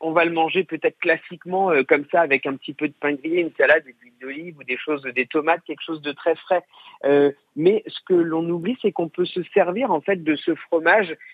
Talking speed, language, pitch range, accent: 250 wpm, French, 155-200 Hz, French